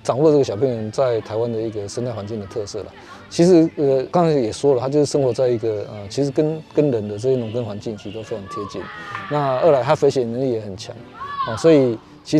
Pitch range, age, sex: 115-150 Hz, 20-39, male